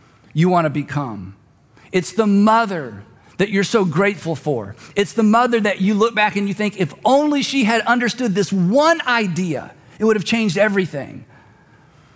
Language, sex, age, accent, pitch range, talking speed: English, male, 40-59, American, 125-195 Hz, 170 wpm